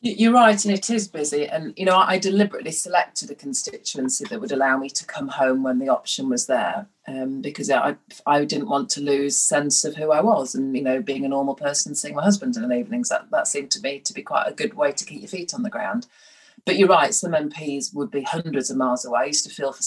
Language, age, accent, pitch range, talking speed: English, 30-49, British, 135-210 Hz, 260 wpm